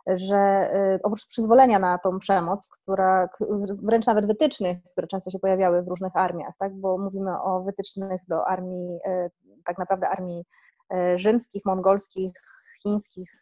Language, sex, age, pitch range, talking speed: Polish, female, 20-39, 190-240 Hz, 135 wpm